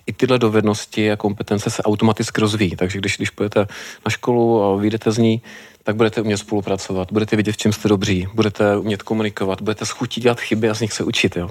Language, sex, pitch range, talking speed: Czech, male, 100-110 Hz, 215 wpm